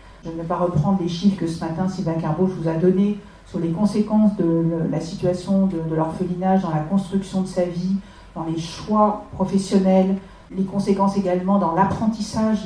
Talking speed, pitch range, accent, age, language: 185 wpm, 170-200 Hz, French, 50-69, French